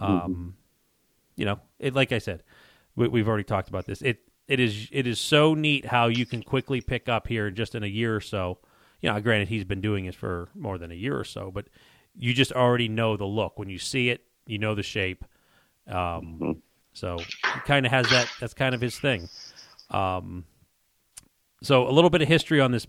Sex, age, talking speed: male, 30-49, 210 wpm